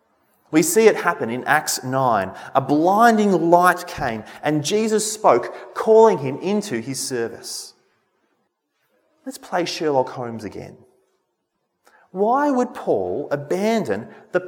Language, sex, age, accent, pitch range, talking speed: English, male, 30-49, Australian, 155-235 Hz, 120 wpm